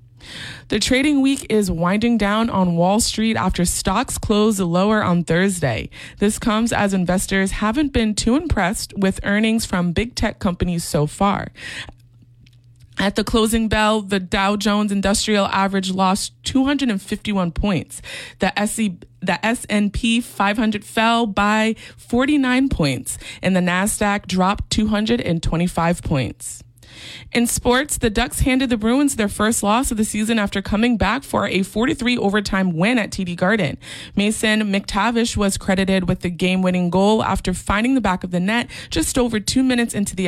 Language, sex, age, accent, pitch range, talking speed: English, female, 20-39, American, 180-220 Hz, 150 wpm